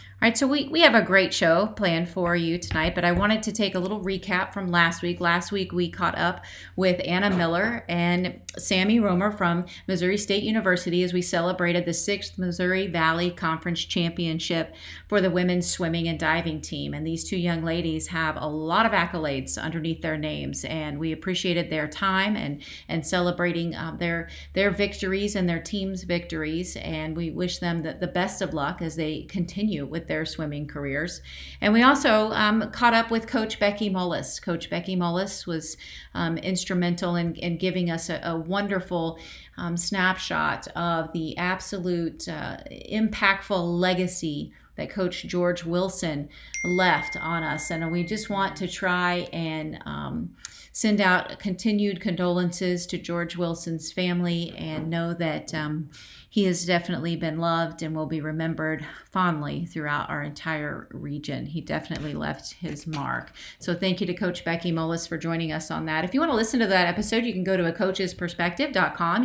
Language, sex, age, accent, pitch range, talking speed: English, female, 30-49, American, 165-190 Hz, 175 wpm